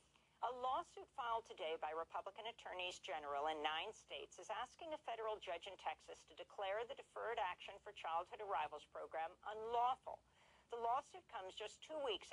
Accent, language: American, English